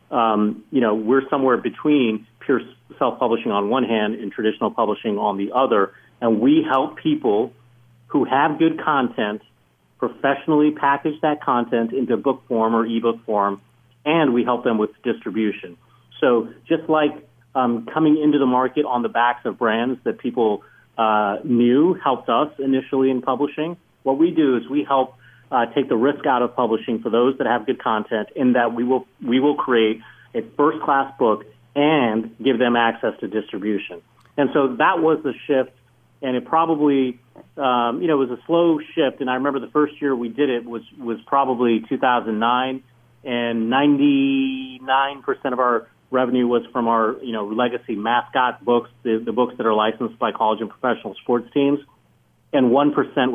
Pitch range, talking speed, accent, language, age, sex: 115-140 Hz, 175 wpm, American, English, 40-59, male